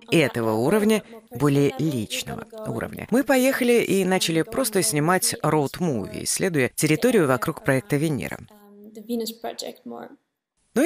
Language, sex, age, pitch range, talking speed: Russian, female, 30-49, 155-230 Hz, 100 wpm